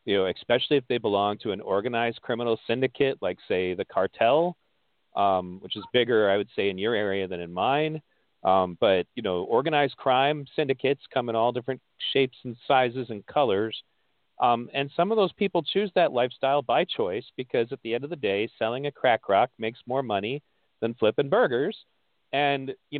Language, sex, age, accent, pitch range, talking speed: English, male, 40-59, American, 120-160 Hz, 195 wpm